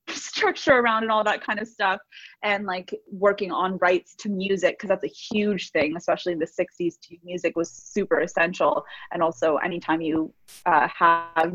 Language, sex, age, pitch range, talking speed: English, female, 20-39, 170-205 Hz, 180 wpm